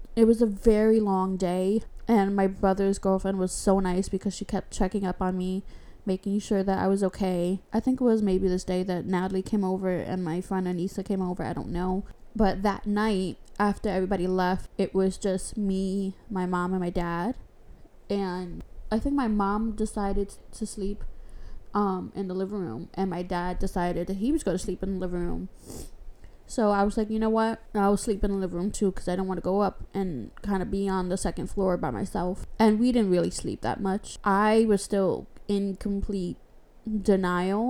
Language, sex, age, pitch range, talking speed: English, female, 20-39, 185-205 Hz, 210 wpm